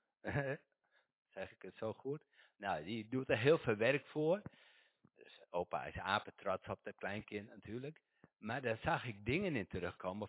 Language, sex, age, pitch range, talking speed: Dutch, male, 60-79, 85-125 Hz, 165 wpm